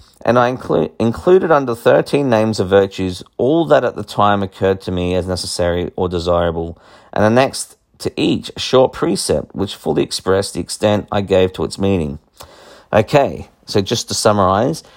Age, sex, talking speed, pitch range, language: 40-59, male, 175 wpm, 90-105 Hz, English